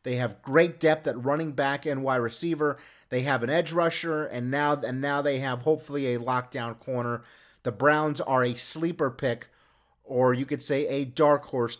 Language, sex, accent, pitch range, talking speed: English, male, American, 125-160 Hz, 195 wpm